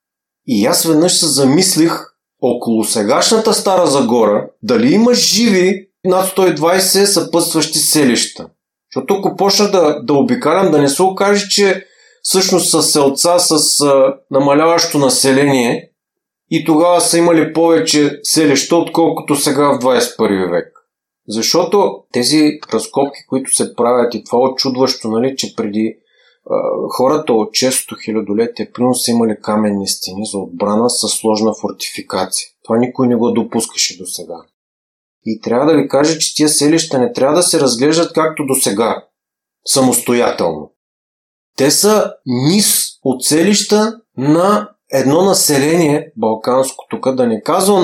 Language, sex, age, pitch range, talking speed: Bulgarian, male, 30-49, 130-185 Hz, 135 wpm